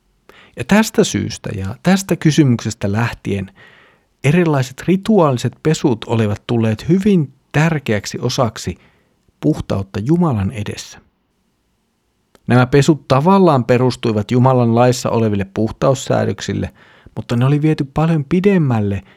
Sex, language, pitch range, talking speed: male, Finnish, 110-145 Hz, 100 wpm